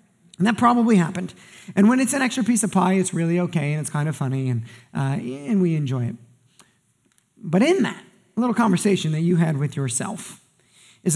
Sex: male